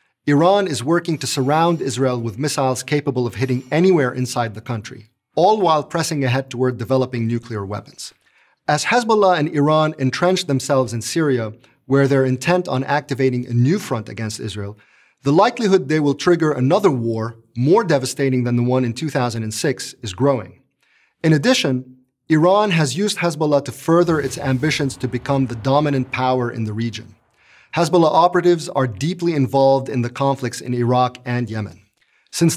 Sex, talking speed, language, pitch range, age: male, 160 wpm, English, 125-160 Hz, 40-59